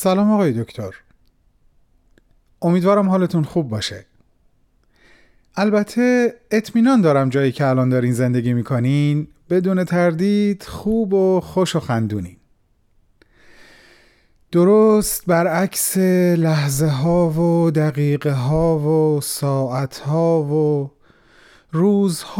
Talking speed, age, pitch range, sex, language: 95 wpm, 30-49, 130-180 Hz, male, Persian